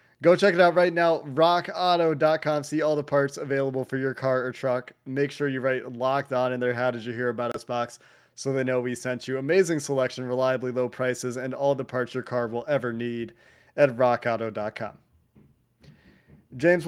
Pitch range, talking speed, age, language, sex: 125-150 Hz, 195 wpm, 20-39, English, male